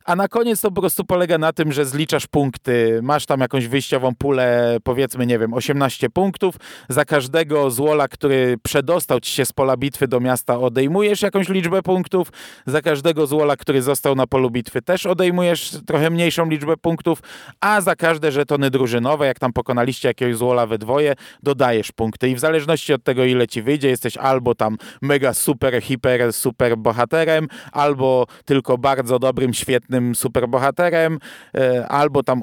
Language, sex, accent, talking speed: Polish, male, native, 170 wpm